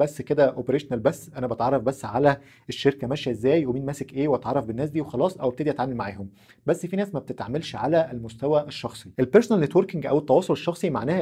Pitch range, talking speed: 125-170 Hz, 195 wpm